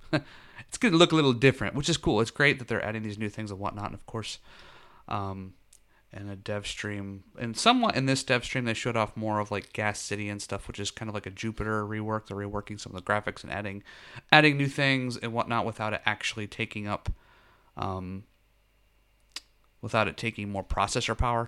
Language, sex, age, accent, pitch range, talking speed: English, male, 30-49, American, 100-115 Hz, 210 wpm